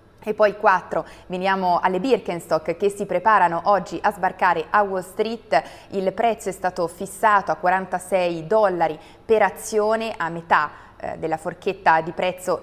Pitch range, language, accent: 165-200 Hz, Italian, native